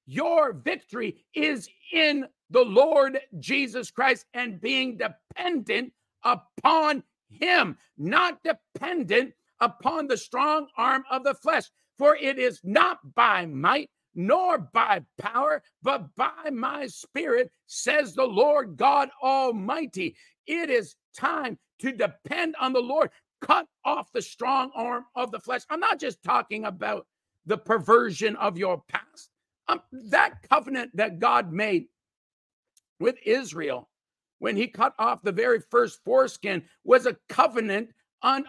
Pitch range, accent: 230-300 Hz, American